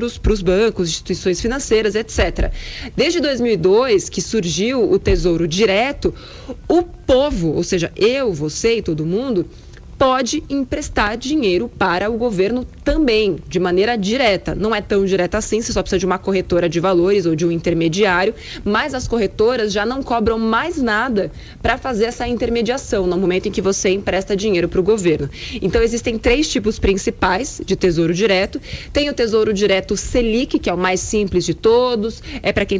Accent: Brazilian